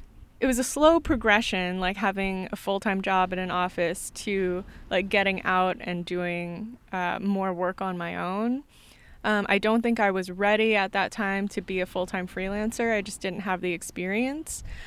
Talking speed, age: 185 wpm, 20-39